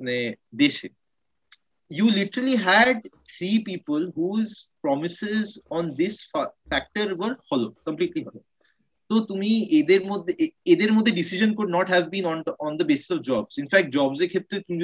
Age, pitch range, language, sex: 30-49, 145-215 Hz, Bengali, male